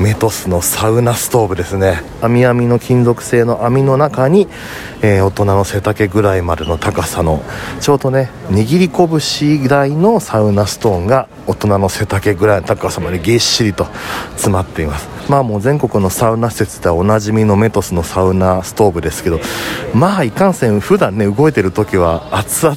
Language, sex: Japanese, male